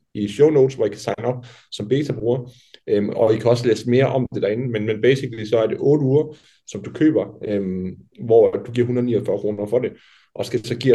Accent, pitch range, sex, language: native, 115-135 Hz, male, Danish